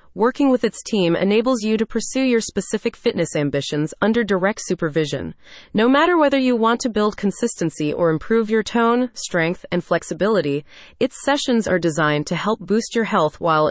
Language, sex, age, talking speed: English, female, 30-49, 175 wpm